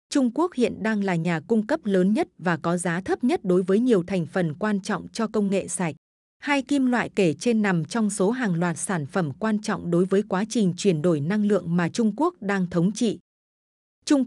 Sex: female